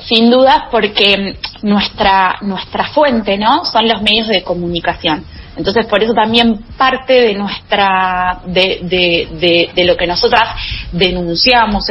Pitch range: 185-235 Hz